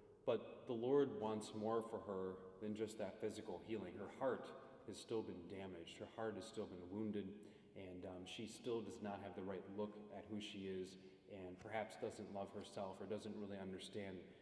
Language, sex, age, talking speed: English, male, 30-49, 195 wpm